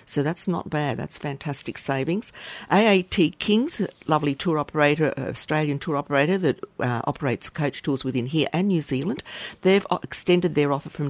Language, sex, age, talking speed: English, female, 50-69, 160 wpm